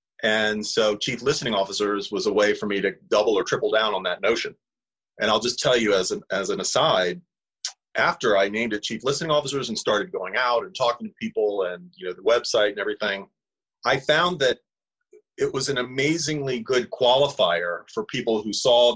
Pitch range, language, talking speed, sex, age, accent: 105-145 Hz, English, 200 wpm, male, 30-49, American